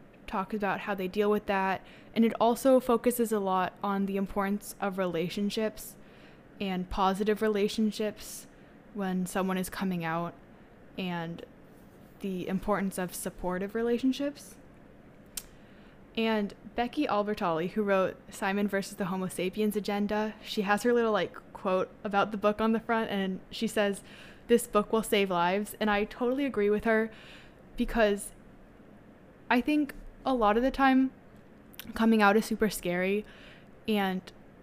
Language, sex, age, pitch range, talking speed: English, female, 20-39, 185-220 Hz, 145 wpm